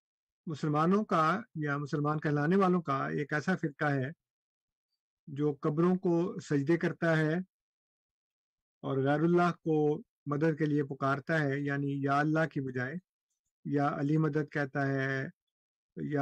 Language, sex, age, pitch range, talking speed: Urdu, male, 50-69, 140-160 Hz, 135 wpm